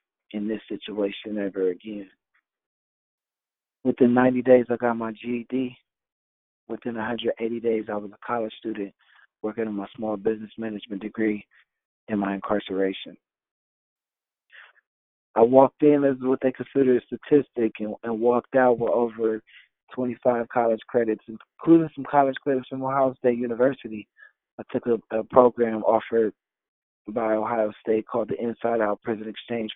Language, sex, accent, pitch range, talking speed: English, male, American, 110-125 Hz, 145 wpm